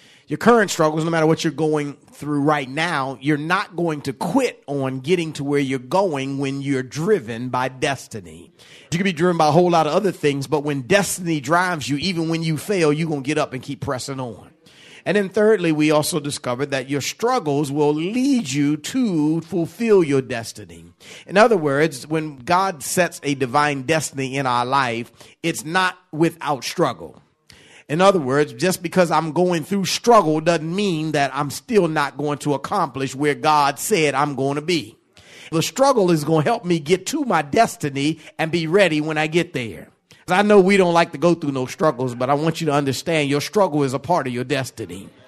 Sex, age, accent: male, 40-59, American